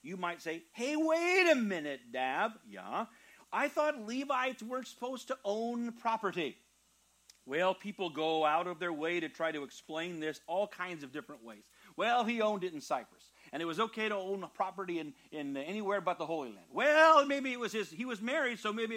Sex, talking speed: male, 205 wpm